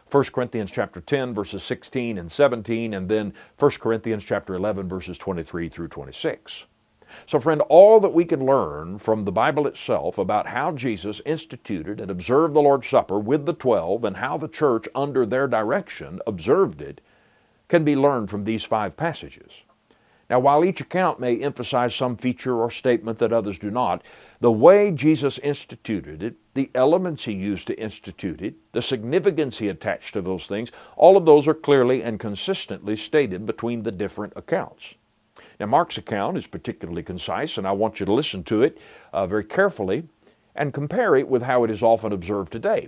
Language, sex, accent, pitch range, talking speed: English, male, American, 105-140 Hz, 180 wpm